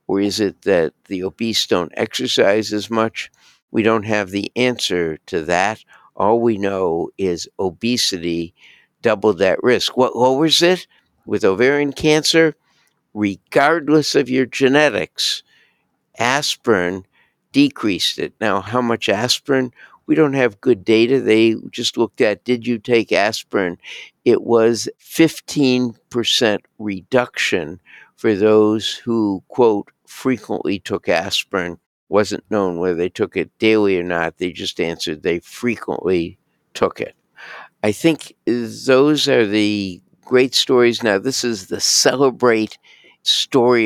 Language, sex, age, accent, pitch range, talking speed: English, male, 60-79, American, 100-125 Hz, 130 wpm